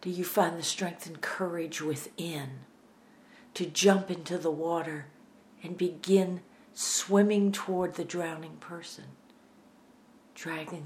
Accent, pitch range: American, 170-245 Hz